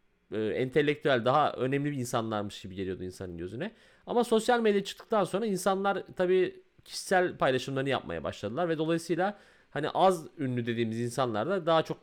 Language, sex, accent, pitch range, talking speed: Turkish, male, native, 125-175 Hz, 155 wpm